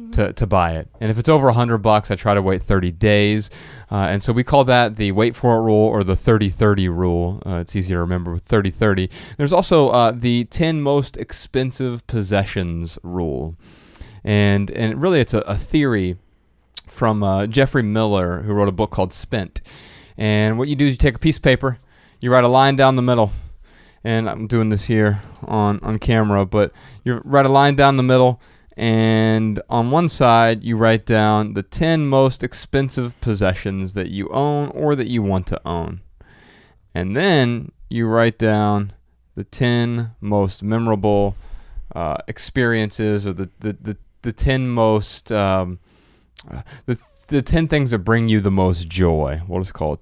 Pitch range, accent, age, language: 95-125 Hz, American, 30-49, English